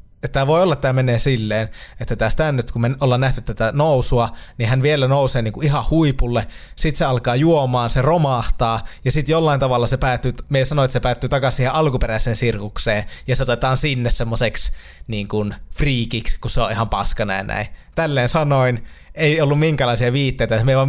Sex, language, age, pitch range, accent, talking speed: male, Finnish, 20-39, 115-135 Hz, native, 185 wpm